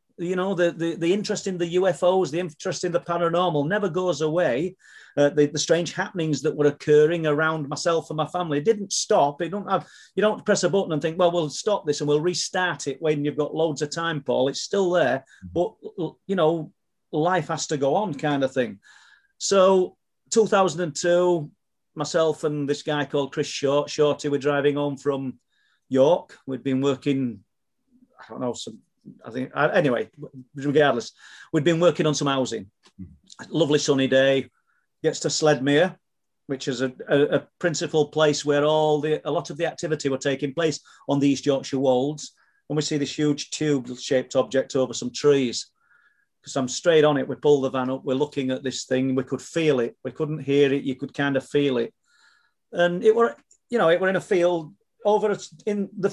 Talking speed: 190 wpm